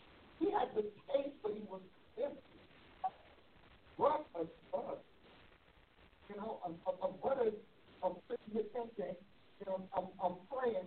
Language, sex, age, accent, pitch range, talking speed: English, male, 60-79, American, 190-265 Hz, 120 wpm